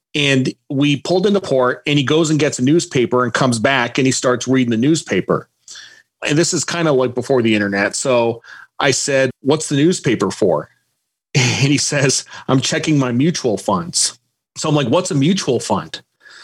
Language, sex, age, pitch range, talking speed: English, male, 40-59, 130-160 Hz, 190 wpm